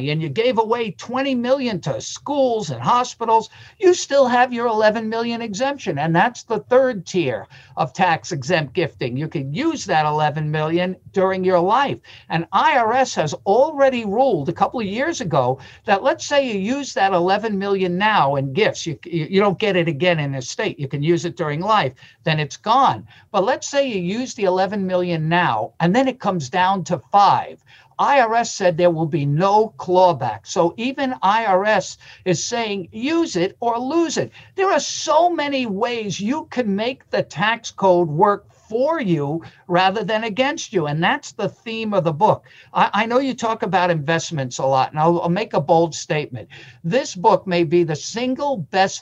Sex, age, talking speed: male, 50-69, 190 wpm